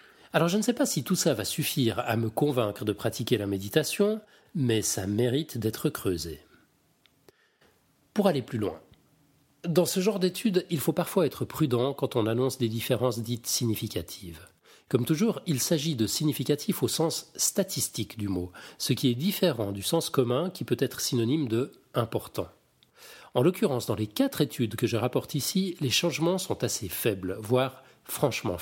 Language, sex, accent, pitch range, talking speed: French, male, French, 110-155 Hz, 175 wpm